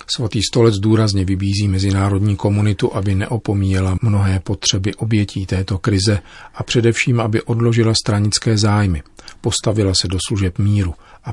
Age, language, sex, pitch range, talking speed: 40-59, Czech, male, 95-105 Hz, 130 wpm